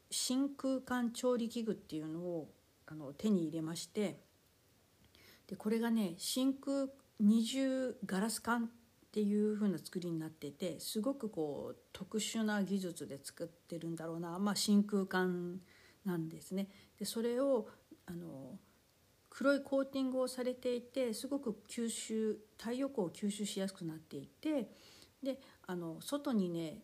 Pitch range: 180-245 Hz